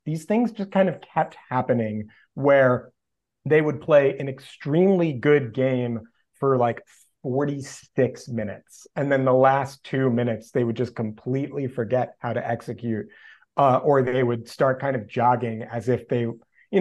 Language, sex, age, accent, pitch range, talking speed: English, male, 30-49, American, 120-145 Hz, 160 wpm